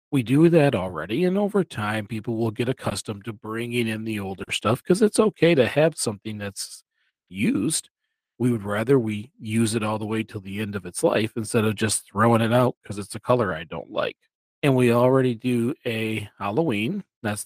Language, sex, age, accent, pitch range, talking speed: English, male, 40-59, American, 110-135 Hz, 205 wpm